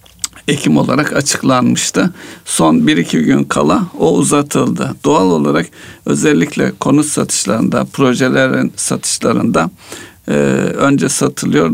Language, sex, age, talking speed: Turkish, male, 60-79, 95 wpm